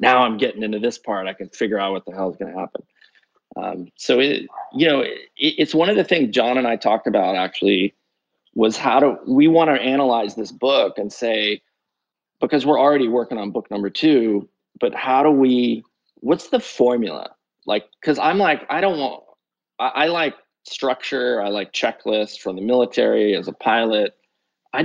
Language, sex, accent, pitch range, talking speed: English, male, American, 105-130 Hz, 195 wpm